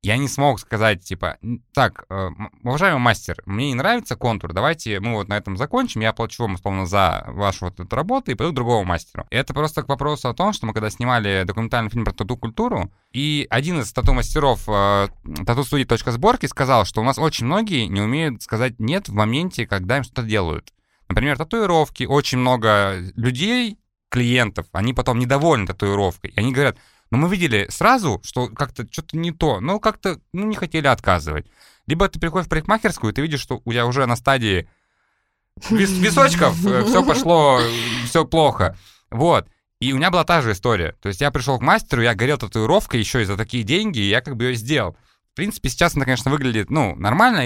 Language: Russian